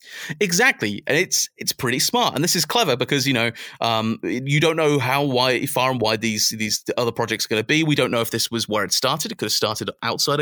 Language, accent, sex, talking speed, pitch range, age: English, British, male, 255 wpm, 110-145 Hz, 30-49